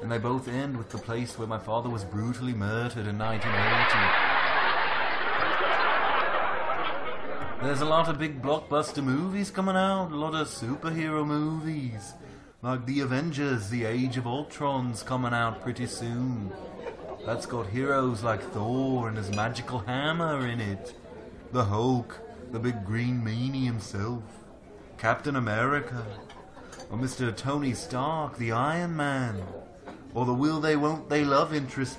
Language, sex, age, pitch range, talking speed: English, male, 30-49, 115-145 Hz, 140 wpm